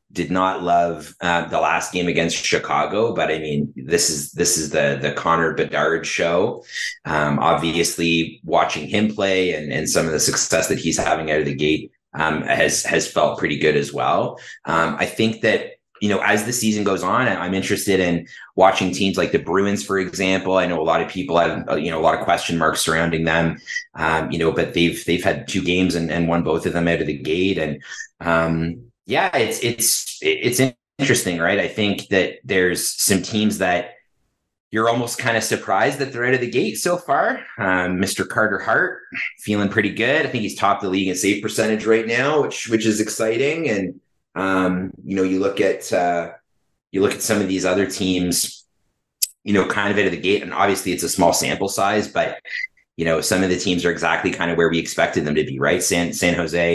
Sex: male